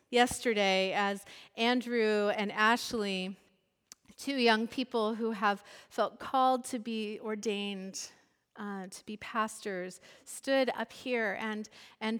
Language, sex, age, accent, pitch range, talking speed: English, female, 40-59, American, 220-255 Hz, 120 wpm